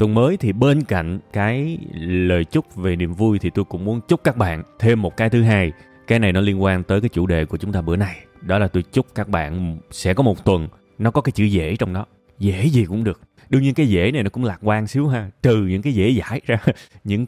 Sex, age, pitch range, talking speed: male, 20-39, 90-120 Hz, 265 wpm